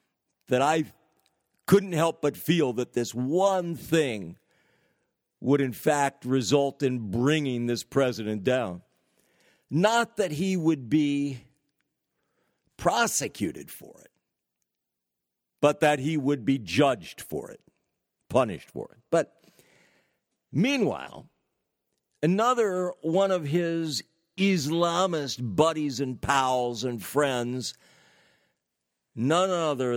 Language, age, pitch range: English, 60-79, 120-160 Hz